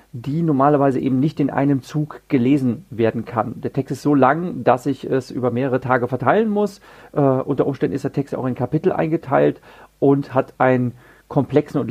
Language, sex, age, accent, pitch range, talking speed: German, male, 40-59, German, 130-160 Hz, 185 wpm